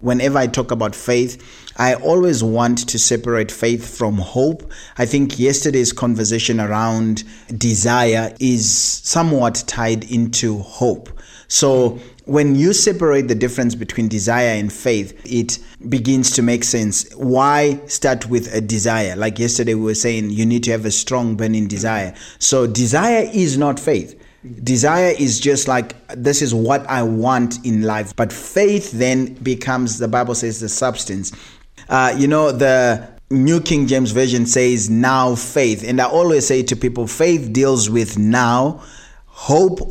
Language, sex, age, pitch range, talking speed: English, male, 30-49, 115-135 Hz, 155 wpm